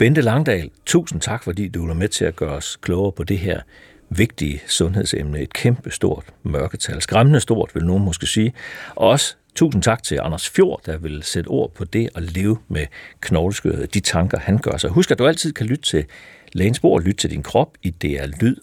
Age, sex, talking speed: 60-79, male, 205 wpm